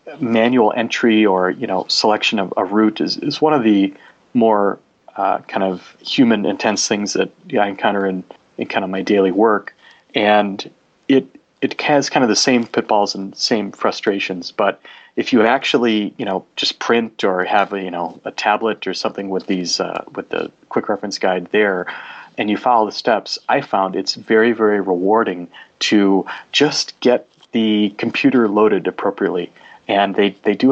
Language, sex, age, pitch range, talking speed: English, male, 30-49, 100-120 Hz, 180 wpm